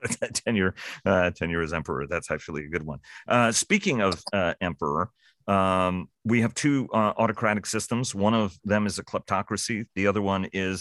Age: 40-59